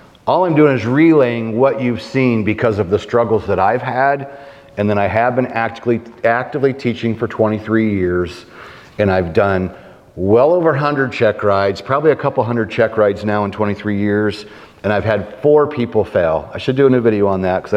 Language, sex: English, male